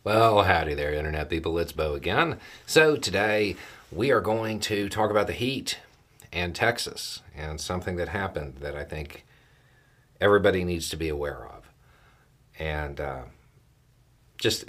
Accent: American